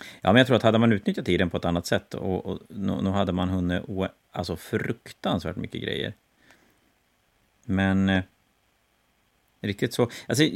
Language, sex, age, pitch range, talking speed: Swedish, male, 30-49, 90-115 Hz, 170 wpm